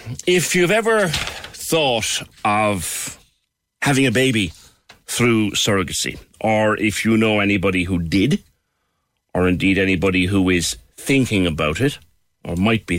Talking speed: 130 wpm